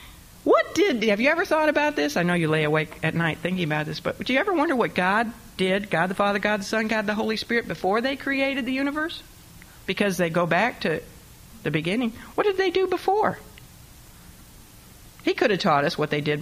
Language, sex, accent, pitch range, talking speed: English, female, American, 150-210 Hz, 225 wpm